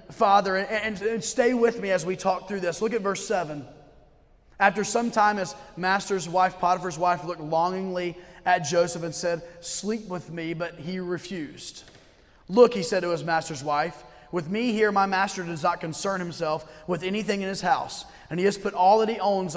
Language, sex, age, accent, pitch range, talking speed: English, male, 30-49, American, 175-205 Hz, 195 wpm